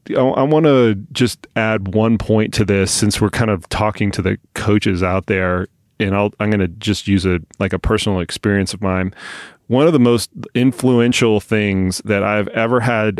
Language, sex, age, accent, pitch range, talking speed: English, male, 30-49, American, 100-115 Hz, 190 wpm